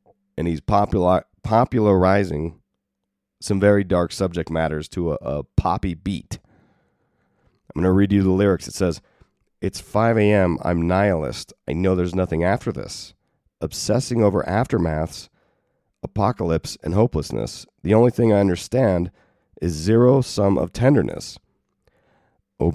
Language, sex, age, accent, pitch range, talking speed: English, male, 40-59, American, 85-105 Hz, 130 wpm